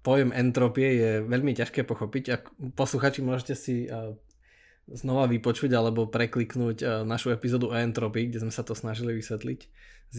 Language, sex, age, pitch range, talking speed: Slovak, male, 20-39, 115-135 Hz, 145 wpm